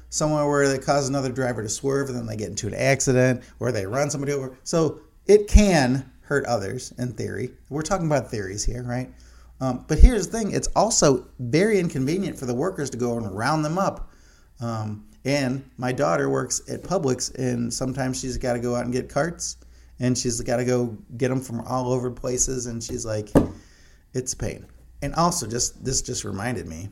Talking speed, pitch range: 205 wpm, 95-130 Hz